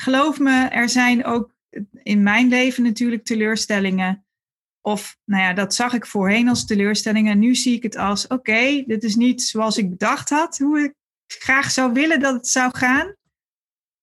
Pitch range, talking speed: 210-260 Hz, 180 wpm